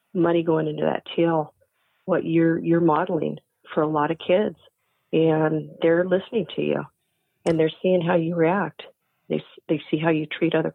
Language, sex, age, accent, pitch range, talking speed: English, female, 40-59, American, 155-175 Hz, 180 wpm